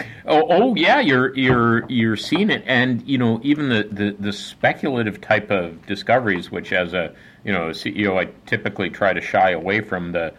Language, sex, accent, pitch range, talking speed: English, male, American, 85-100 Hz, 190 wpm